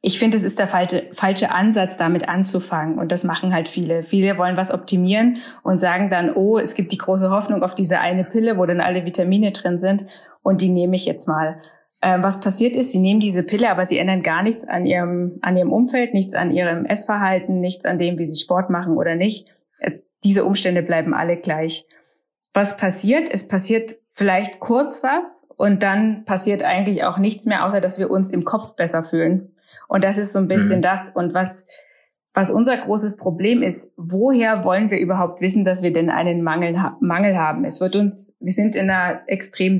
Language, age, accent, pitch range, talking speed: German, 20-39, German, 180-210 Hz, 205 wpm